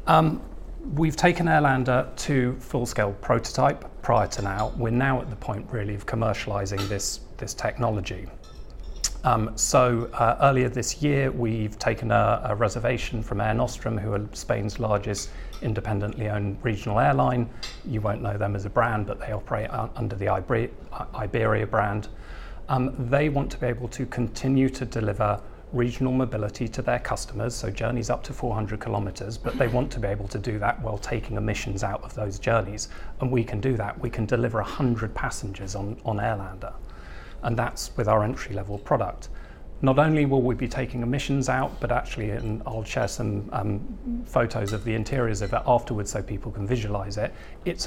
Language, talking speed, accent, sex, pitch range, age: English, 175 wpm, British, male, 105-125 Hz, 40-59